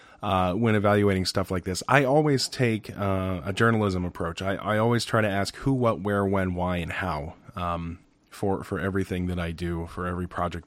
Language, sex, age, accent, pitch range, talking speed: English, male, 30-49, American, 90-110 Hz, 200 wpm